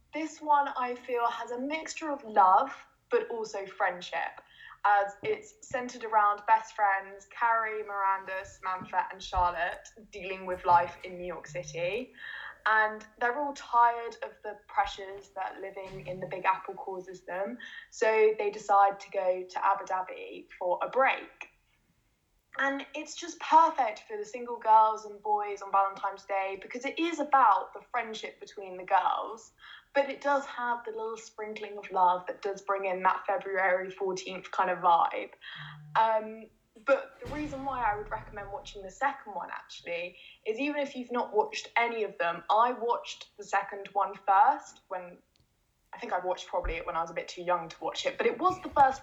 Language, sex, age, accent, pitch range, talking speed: English, female, 10-29, British, 195-275 Hz, 180 wpm